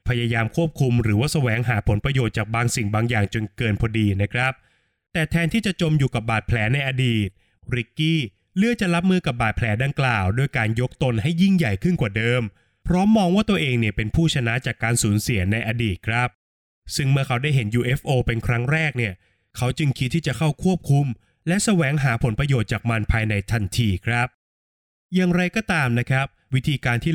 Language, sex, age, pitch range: Thai, male, 20-39, 115-160 Hz